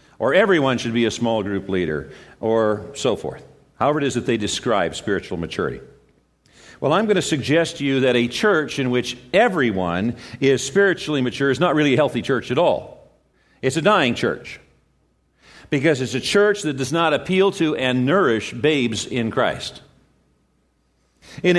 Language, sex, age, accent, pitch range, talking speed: English, male, 50-69, American, 110-160 Hz, 170 wpm